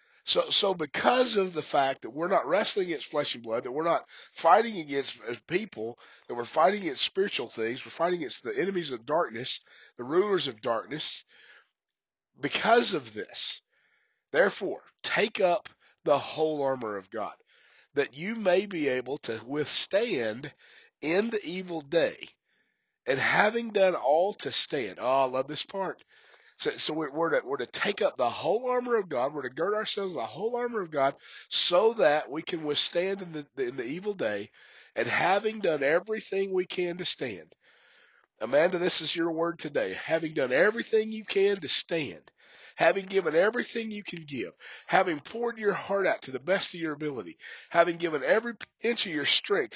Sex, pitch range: male, 150-230 Hz